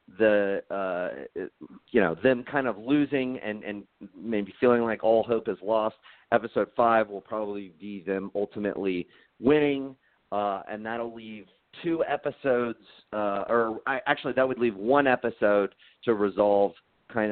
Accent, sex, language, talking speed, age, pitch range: American, male, English, 150 wpm, 40-59, 95-120 Hz